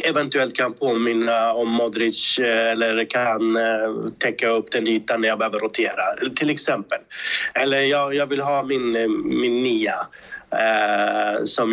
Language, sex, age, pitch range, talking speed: Swedish, male, 30-49, 115-145 Hz, 140 wpm